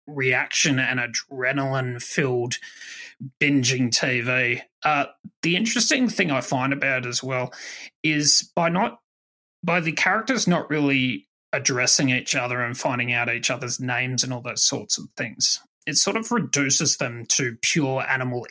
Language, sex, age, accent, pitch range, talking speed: English, male, 30-49, Australian, 130-155 Hz, 150 wpm